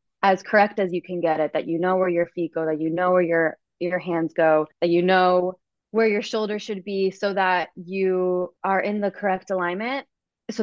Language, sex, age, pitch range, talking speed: English, female, 20-39, 160-185 Hz, 220 wpm